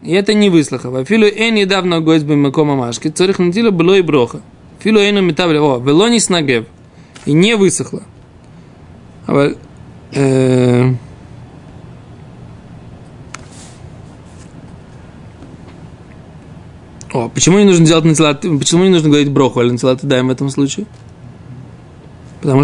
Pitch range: 145-195 Hz